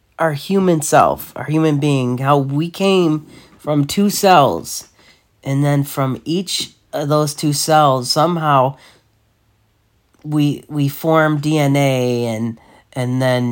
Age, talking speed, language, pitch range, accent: 40-59, 125 wpm, English, 120-160 Hz, American